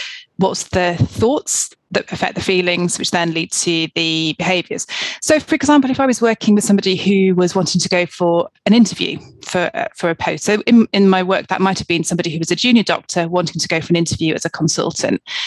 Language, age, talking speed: English, 30-49, 225 wpm